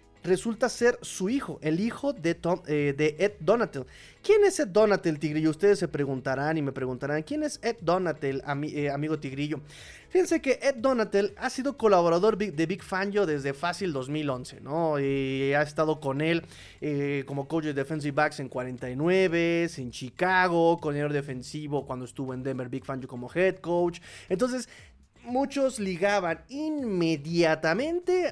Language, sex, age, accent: Spanish, male, 30-49, Mexican